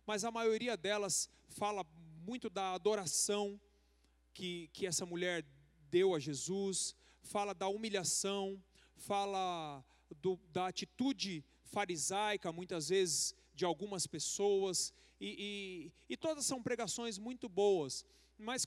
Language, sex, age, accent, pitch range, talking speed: Portuguese, male, 40-59, Brazilian, 165-210 Hz, 115 wpm